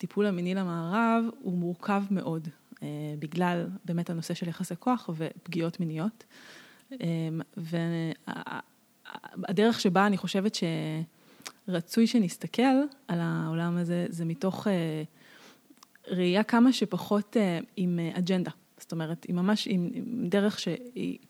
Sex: female